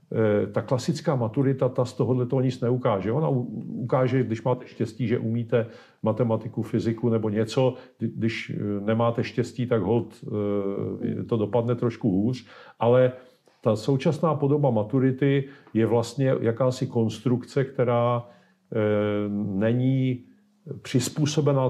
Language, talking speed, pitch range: Czech, 110 wpm, 110-130 Hz